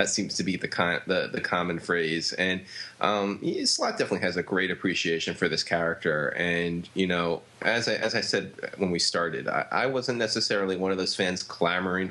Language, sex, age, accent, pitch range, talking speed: English, male, 20-39, American, 85-100 Hz, 210 wpm